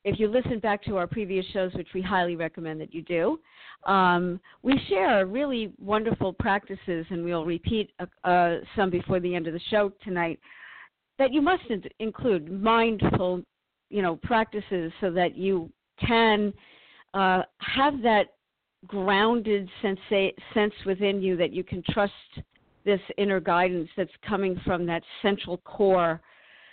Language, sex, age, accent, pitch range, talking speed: English, female, 50-69, American, 180-210 Hz, 150 wpm